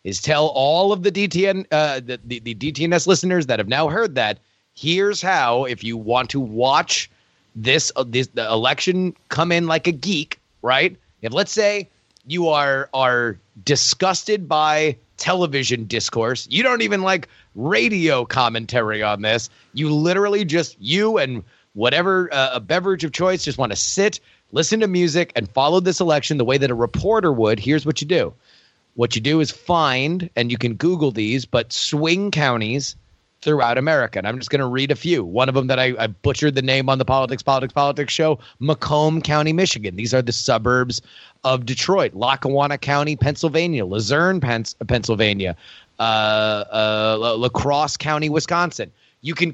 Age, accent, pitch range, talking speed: 30-49, American, 120-165 Hz, 175 wpm